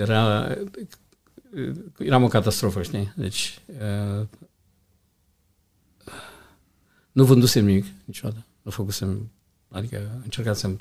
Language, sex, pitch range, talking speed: Romanian, male, 95-115 Hz, 90 wpm